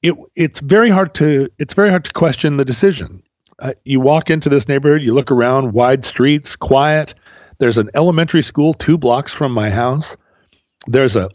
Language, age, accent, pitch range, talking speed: English, 40-59, American, 115-165 Hz, 185 wpm